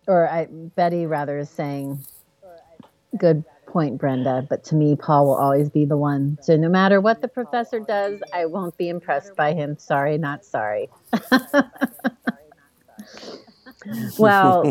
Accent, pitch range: American, 140-190 Hz